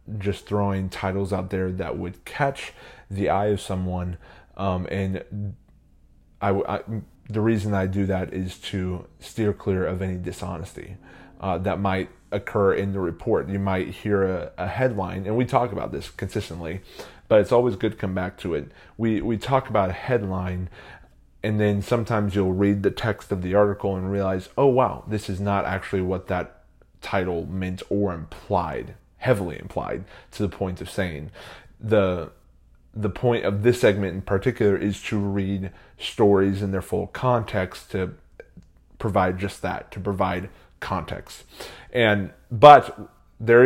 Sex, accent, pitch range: male, American, 95-105 Hz